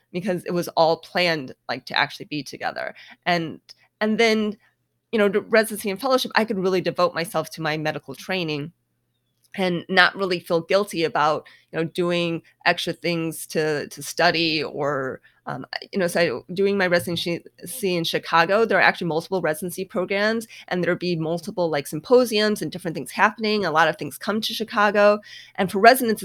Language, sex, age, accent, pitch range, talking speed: English, female, 30-49, American, 160-195 Hz, 175 wpm